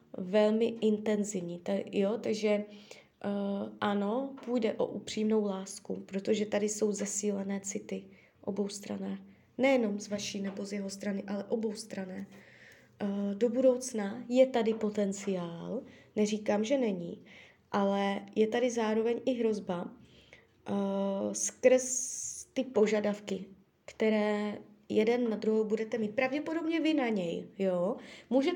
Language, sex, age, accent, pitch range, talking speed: Czech, female, 20-39, native, 200-235 Hz, 125 wpm